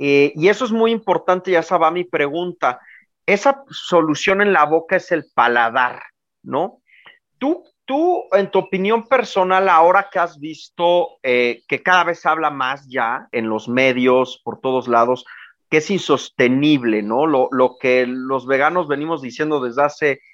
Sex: male